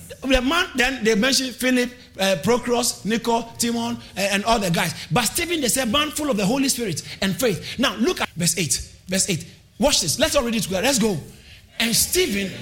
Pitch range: 190-285 Hz